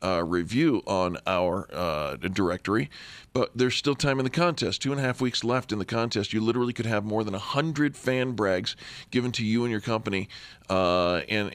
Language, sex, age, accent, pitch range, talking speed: English, male, 40-59, American, 95-125 Hz, 210 wpm